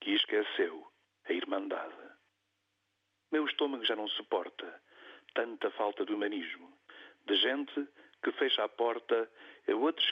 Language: Portuguese